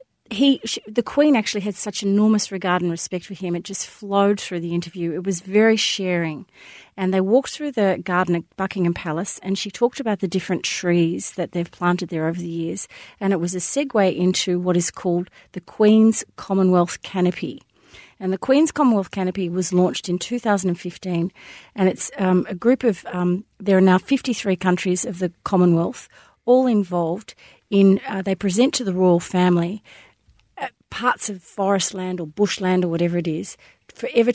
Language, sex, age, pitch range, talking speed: English, female, 40-59, 180-215 Hz, 175 wpm